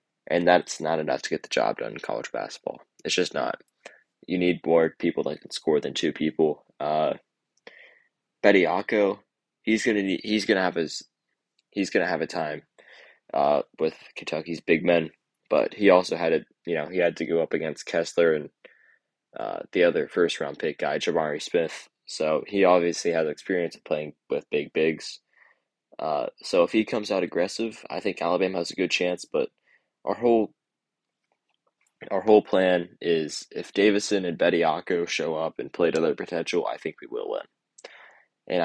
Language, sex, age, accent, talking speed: English, male, 20-39, American, 180 wpm